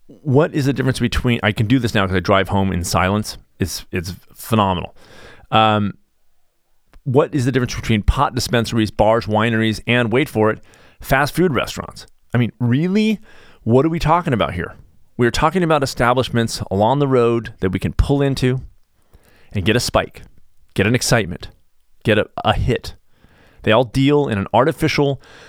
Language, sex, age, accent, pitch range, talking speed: English, male, 30-49, American, 100-135 Hz, 175 wpm